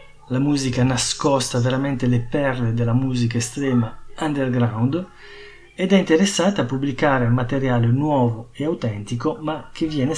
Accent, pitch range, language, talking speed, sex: native, 120-145 Hz, Italian, 130 wpm, male